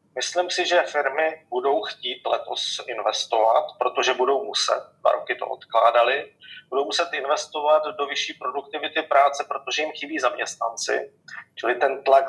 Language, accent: Czech, native